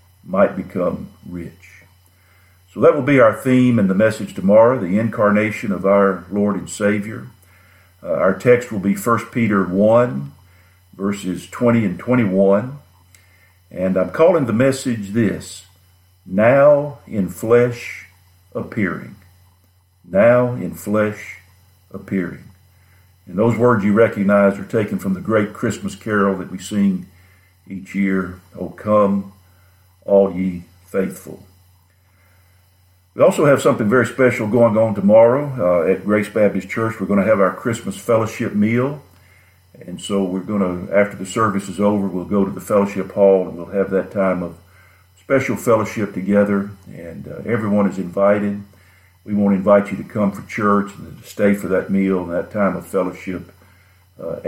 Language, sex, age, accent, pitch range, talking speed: English, male, 50-69, American, 90-105 Hz, 155 wpm